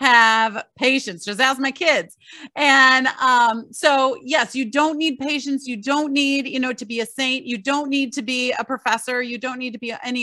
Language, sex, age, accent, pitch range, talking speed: English, female, 30-49, American, 220-275 Hz, 210 wpm